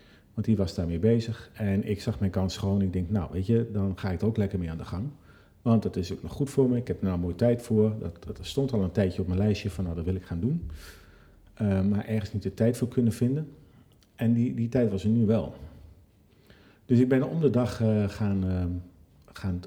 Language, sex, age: Dutch, male, 50-69